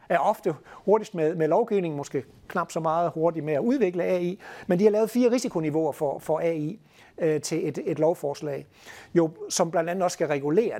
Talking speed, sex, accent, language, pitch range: 195 wpm, male, native, Danish, 145-185 Hz